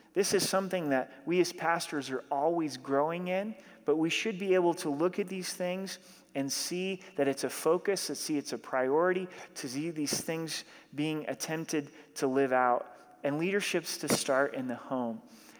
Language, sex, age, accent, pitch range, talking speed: English, male, 30-49, American, 145-180 Hz, 185 wpm